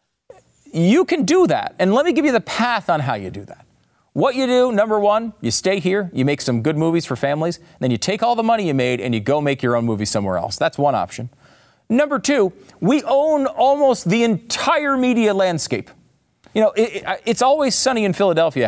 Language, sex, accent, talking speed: English, male, American, 215 wpm